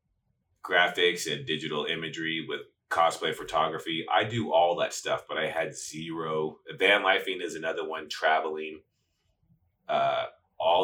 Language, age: English, 30-49